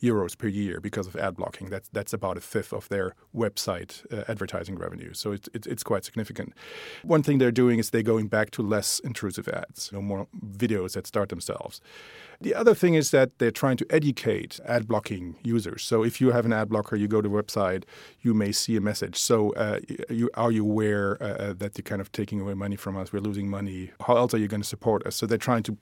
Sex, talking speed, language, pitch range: male, 240 wpm, English, 100-115 Hz